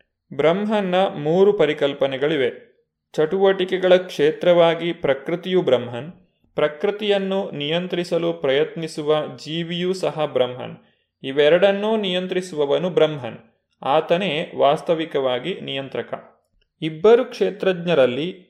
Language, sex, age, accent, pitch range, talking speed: Kannada, male, 20-39, native, 145-185 Hz, 70 wpm